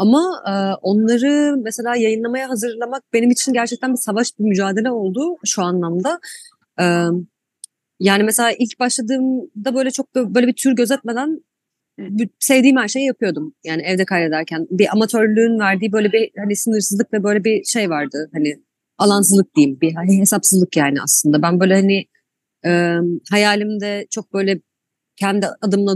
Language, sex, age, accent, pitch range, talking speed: Turkish, female, 30-49, native, 185-235 Hz, 140 wpm